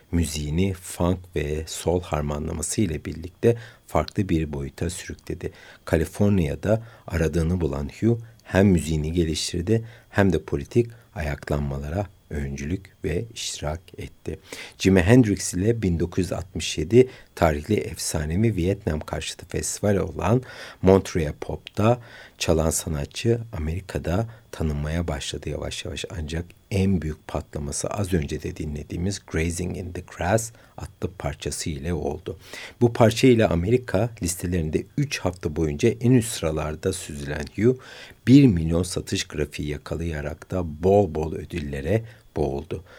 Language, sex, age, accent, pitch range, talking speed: Turkish, male, 60-79, native, 80-110 Hz, 115 wpm